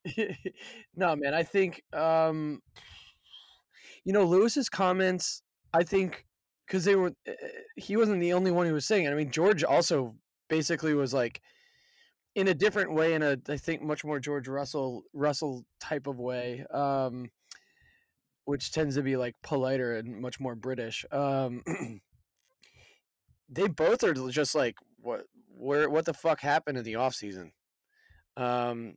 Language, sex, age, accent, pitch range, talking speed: English, male, 20-39, American, 135-170 Hz, 155 wpm